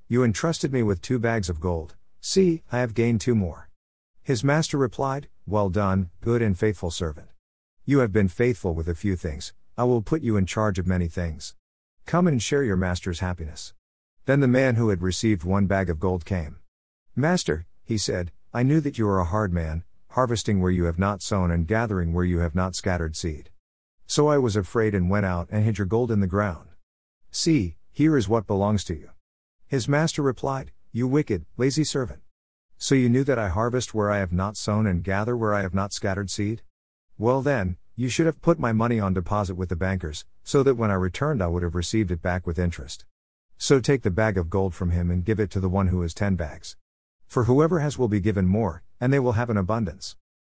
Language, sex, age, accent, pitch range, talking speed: English, male, 50-69, American, 90-120 Hz, 220 wpm